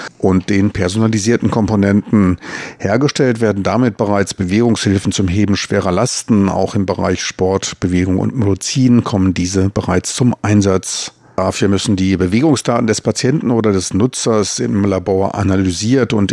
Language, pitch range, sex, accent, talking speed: German, 95-115 Hz, male, German, 140 wpm